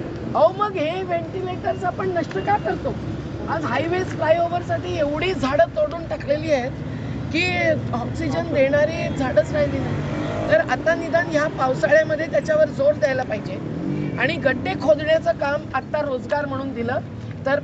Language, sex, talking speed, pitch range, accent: Marathi, female, 140 wpm, 245-315 Hz, native